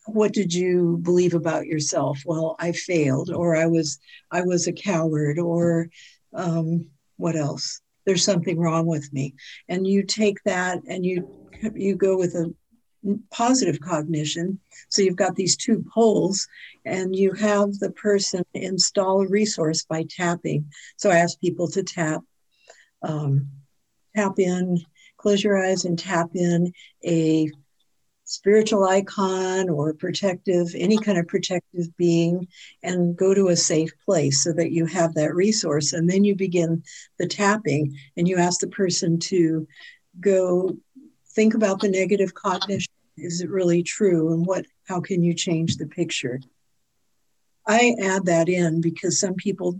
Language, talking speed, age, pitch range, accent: English, 155 wpm, 60-79, 165-195 Hz, American